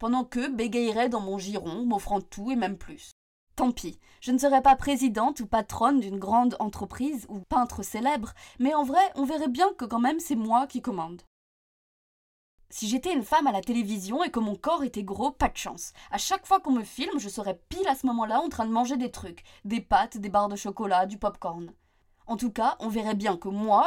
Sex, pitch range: female, 200-260 Hz